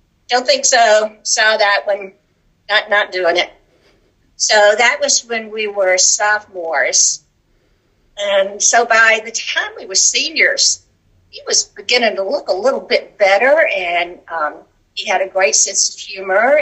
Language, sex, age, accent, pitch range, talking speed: English, female, 60-79, American, 180-250 Hz, 155 wpm